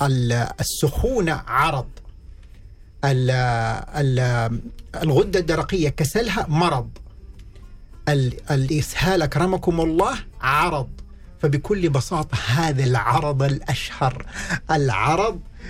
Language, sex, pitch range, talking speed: Arabic, male, 125-150 Hz, 60 wpm